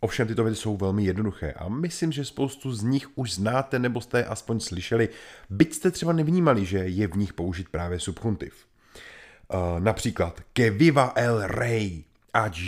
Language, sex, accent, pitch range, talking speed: Czech, male, native, 95-130 Hz, 165 wpm